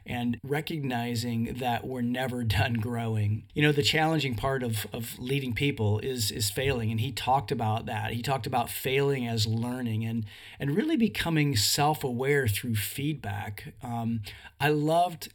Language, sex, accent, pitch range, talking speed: English, male, American, 115-140 Hz, 155 wpm